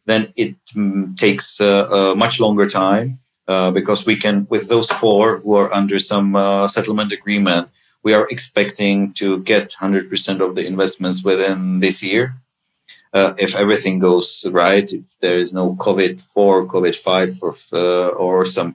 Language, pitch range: English, 95-105 Hz